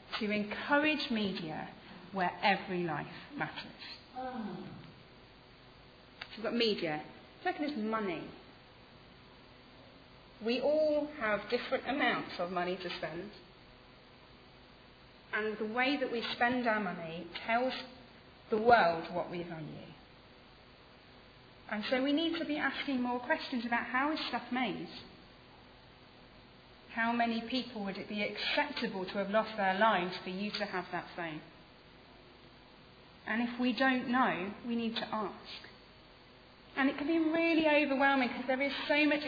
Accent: British